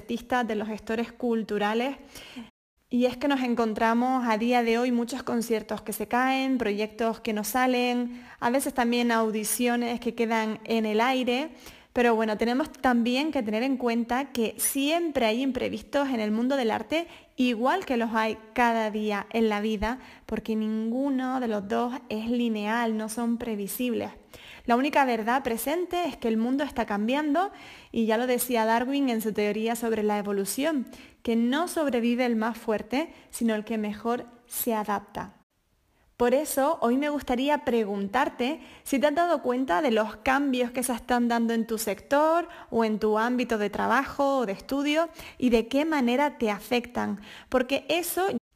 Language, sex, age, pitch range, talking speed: Spanish, female, 20-39, 225-265 Hz, 170 wpm